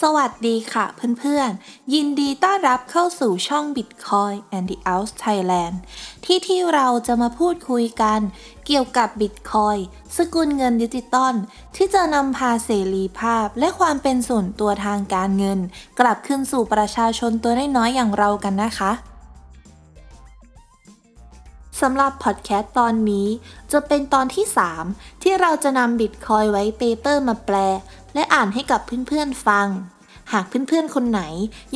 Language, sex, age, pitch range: Thai, female, 20-39, 200-270 Hz